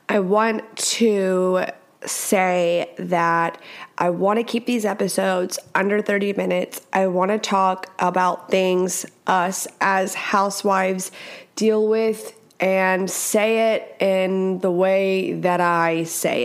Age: 20-39